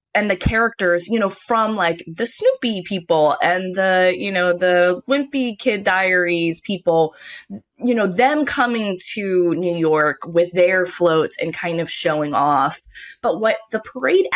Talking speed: 160 wpm